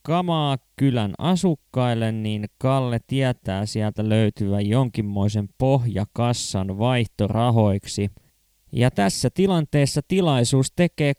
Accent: native